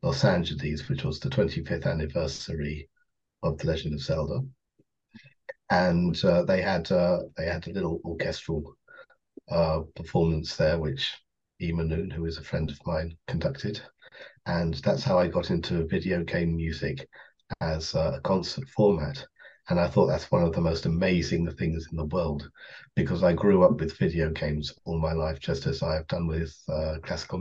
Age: 40-59